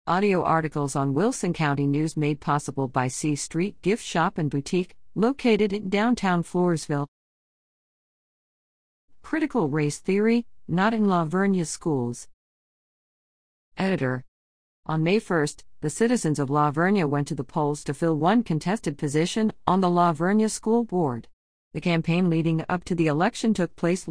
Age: 50-69